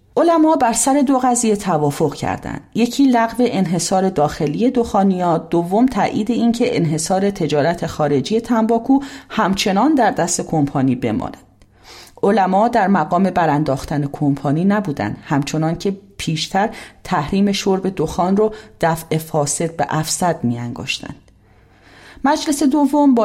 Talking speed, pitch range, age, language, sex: 120 wpm, 160-230 Hz, 40-59, English, female